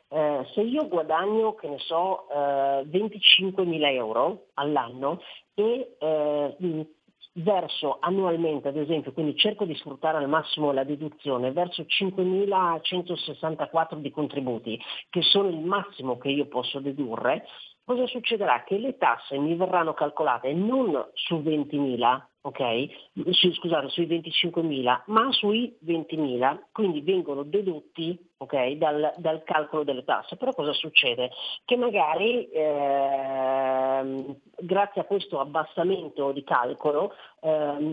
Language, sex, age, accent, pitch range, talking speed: Italian, female, 40-59, native, 140-180 Hz, 120 wpm